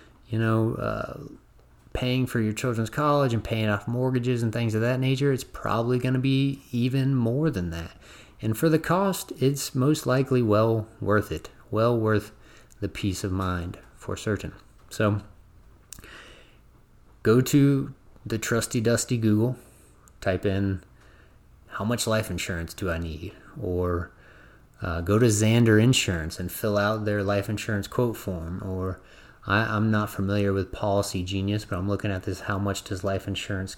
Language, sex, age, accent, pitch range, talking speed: English, male, 30-49, American, 100-120 Hz, 165 wpm